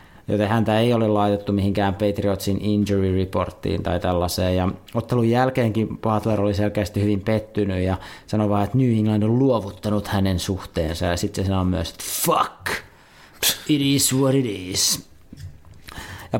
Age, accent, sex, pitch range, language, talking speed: 30-49, native, male, 100-120 Hz, Finnish, 155 wpm